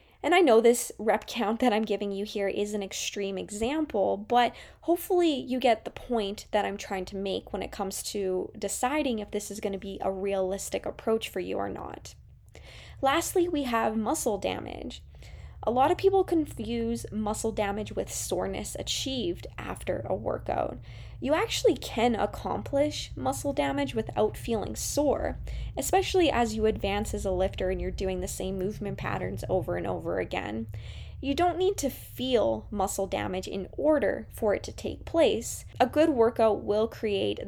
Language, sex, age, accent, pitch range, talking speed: English, female, 10-29, American, 195-245 Hz, 175 wpm